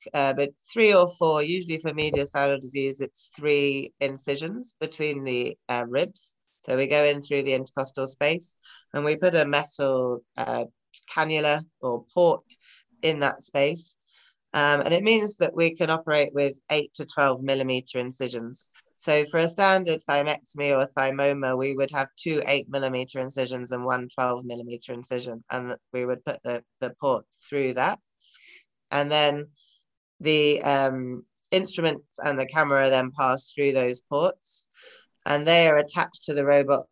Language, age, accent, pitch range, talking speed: English, 30-49, British, 130-150 Hz, 160 wpm